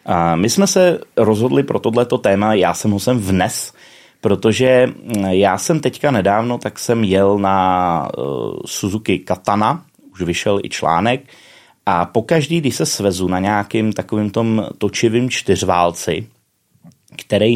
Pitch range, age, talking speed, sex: 95-125 Hz, 30-49, 135 wpm, male